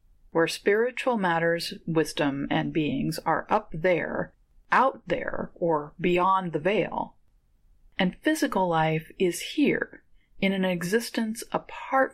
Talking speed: 120 wpm